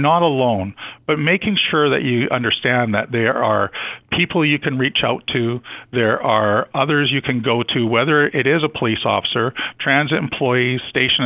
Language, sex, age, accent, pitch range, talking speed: English, male, 50-69, American, 115-150 Hz, 175 wpm